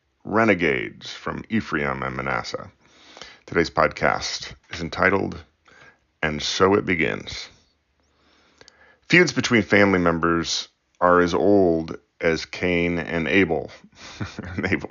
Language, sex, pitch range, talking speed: English, male, 80-95 Hz, 100 wpm